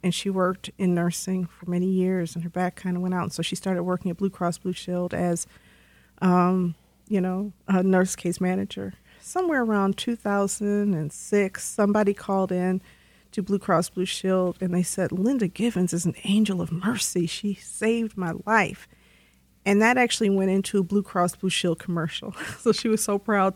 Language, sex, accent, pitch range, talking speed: English, female, American, 180-210 Hz, 190 wpm